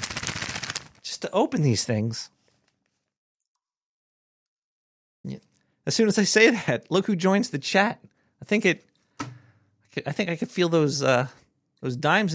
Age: 40-59